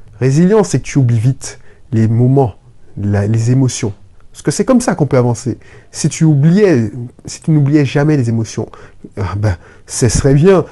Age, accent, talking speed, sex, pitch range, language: 30-49, French, 185 wpm, male, 115-150 Hz, French